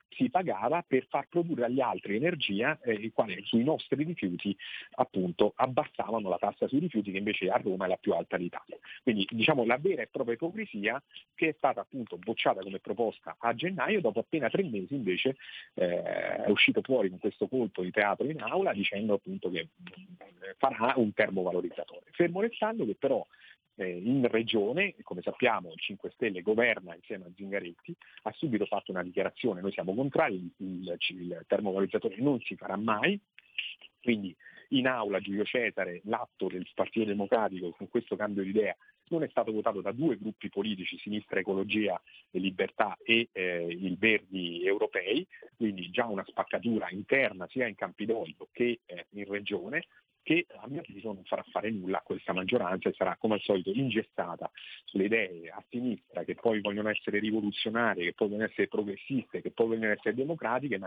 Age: 40-59